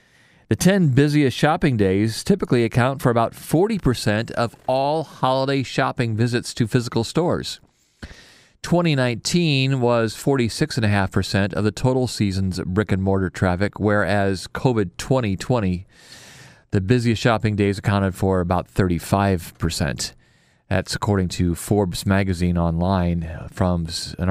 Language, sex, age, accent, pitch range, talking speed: English, male, 40-59, American, 95-135 Hz, 110 wpm